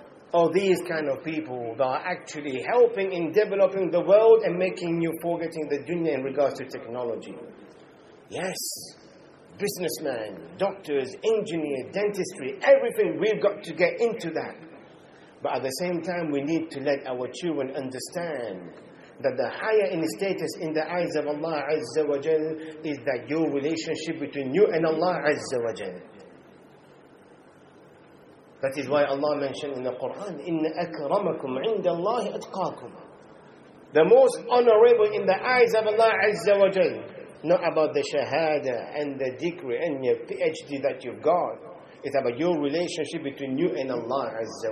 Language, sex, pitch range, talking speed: English, male, 150-220 Hz, 150 wpm